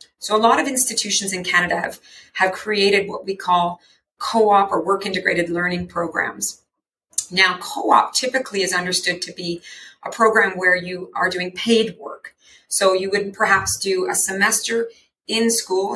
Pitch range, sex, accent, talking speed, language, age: 170-200 Hz, female, American, 160 wpm, English, 40-59